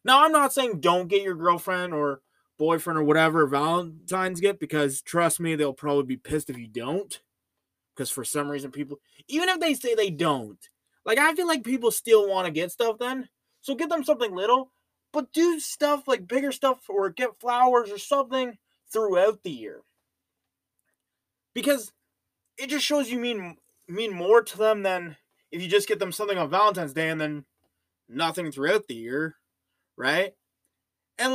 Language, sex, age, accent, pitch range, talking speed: English, male, 20-39, American, 165-260 Hz, 180 wpm